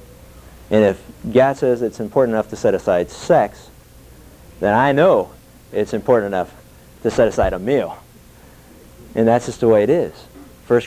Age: 50-69